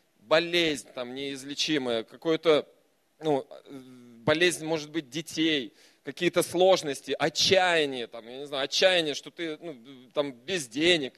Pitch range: 135-165 Hz